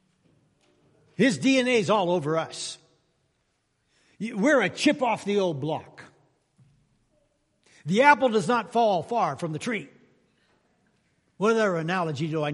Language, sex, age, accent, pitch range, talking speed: English, male, 60-79, American, 150-215 Hz, 130 wpm